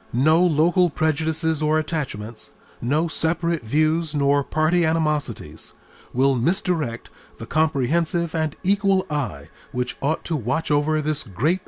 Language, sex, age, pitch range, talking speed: English, male, 40-59, 125-170 Hz, 130 wpm